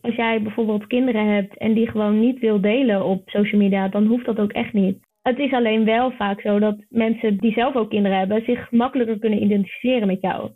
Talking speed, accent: 220 wpm, Dutch